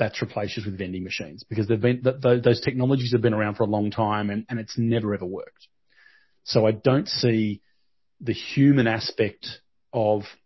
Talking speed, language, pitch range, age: 180 wpm, English, 105-125 Hz, 30-49